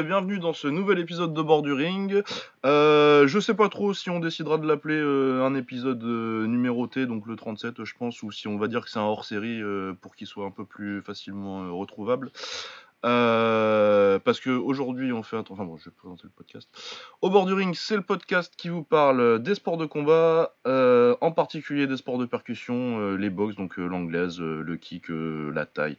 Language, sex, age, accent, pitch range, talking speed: French, male, 20-39, French, 105-155 Hz, 210 wpm